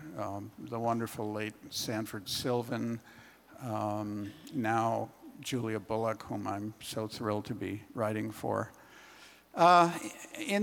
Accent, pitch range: American, 115-155 Hz